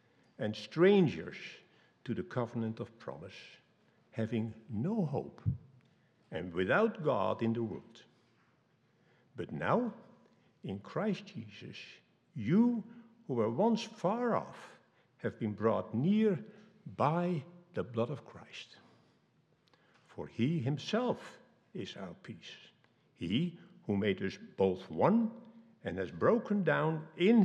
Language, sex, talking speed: English, male, 115 wpm